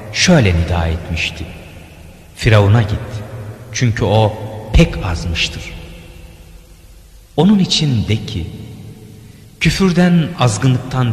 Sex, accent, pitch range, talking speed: male, native, 90-120 Hz, 75 wpm